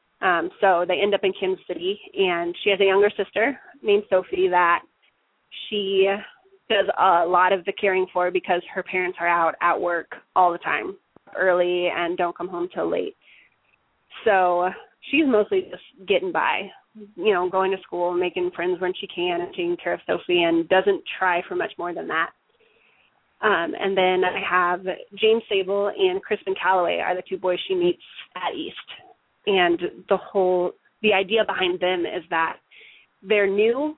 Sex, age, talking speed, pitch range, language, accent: female, 20-39, 175 wpm, 180-220 Hz, English, American